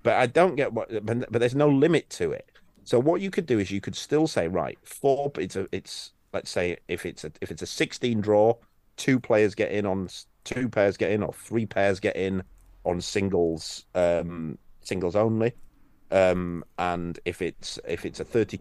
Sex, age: male, 30-49